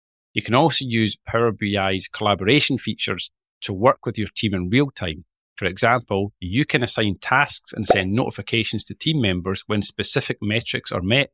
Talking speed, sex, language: 175 wpm, male, English